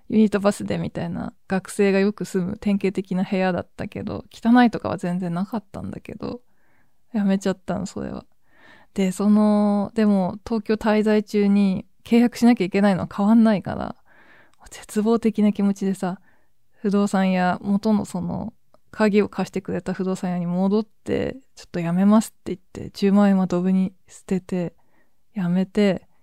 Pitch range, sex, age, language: 185-215 Hz, female, 20-39, Japanese